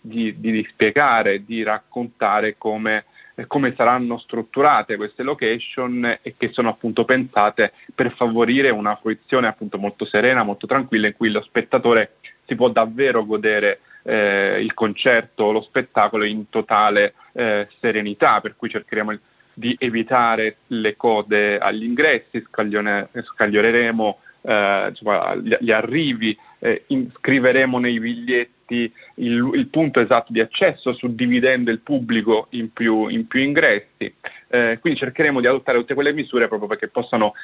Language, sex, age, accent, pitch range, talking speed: Italian, male, 30-49, native, 110-125 Hz, 145 wpm